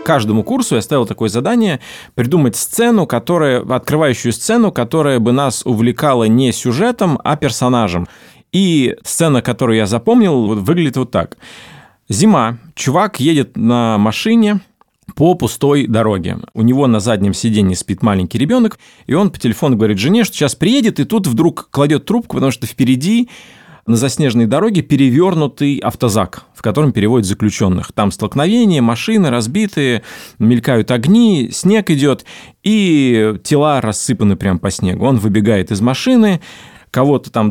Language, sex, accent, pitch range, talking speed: Russian, male, native, 110-180 Hz, 140 wpm